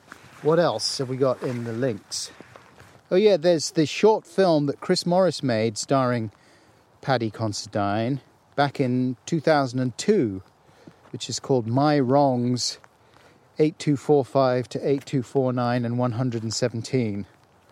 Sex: male